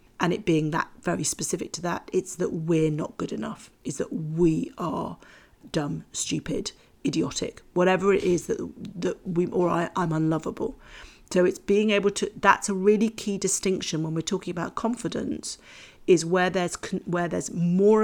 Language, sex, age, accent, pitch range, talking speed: English, female, 40-59, British, 165-200 Hz, 175 wpm